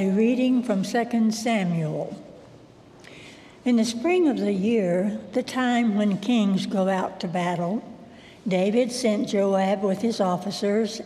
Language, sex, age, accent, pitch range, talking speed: English, female, 60-79, American, 190-240 Hz, 135 wpm